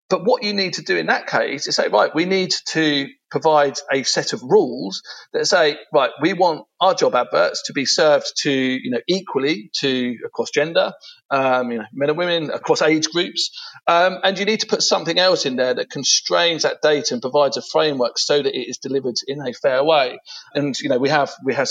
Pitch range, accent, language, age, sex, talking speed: 130-185 Hz, British, English, 40-59, male, 225 wpm